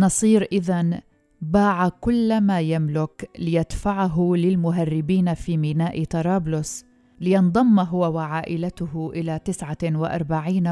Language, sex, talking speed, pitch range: Arabic, female, 95 wpm, 160-190 Hz